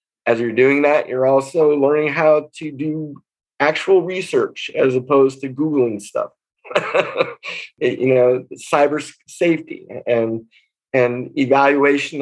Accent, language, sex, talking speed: American, English, male, 120 wpm